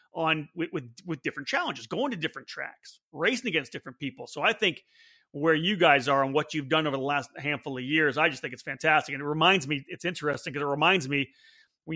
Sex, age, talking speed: male, 30-49, 235 wpm